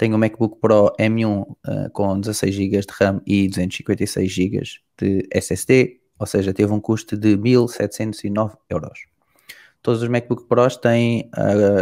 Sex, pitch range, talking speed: male, 100-120 Hz, 155 wpm